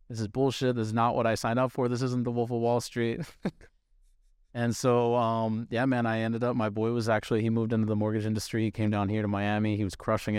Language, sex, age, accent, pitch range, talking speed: English, male, 30-49, American, 105-125 Hz, 260 wpm